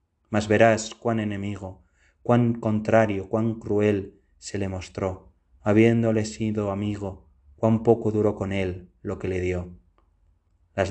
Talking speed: 130 wpm